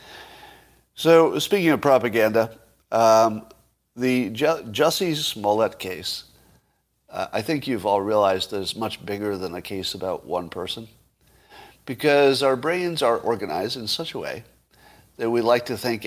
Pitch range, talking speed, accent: 100-130 Hz, 150 wpm, American